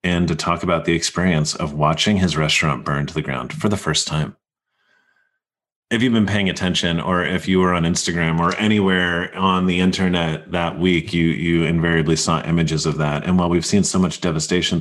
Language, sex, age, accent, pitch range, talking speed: English, male, 30-49, American, 80-100 Hz, 205 wpm